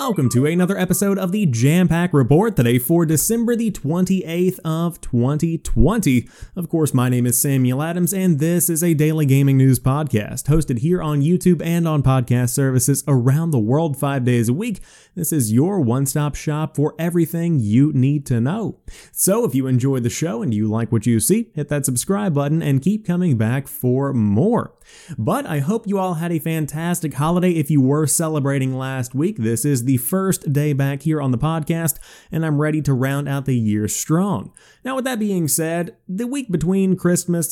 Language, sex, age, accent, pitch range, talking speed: English, male, 30-49, American, 130-175 Hz, 195 wpm